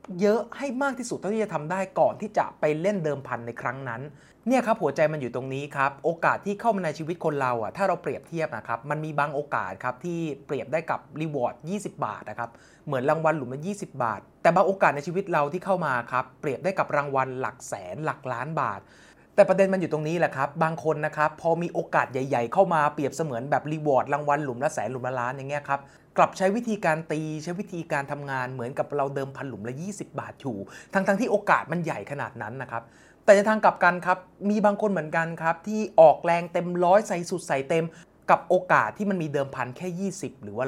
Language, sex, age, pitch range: English, male, 20-39, 130-180 Hz